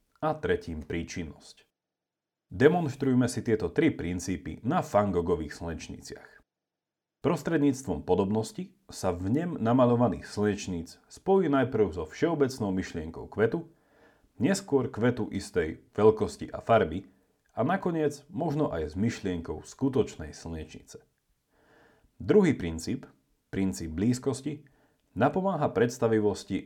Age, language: 40-59, Slovak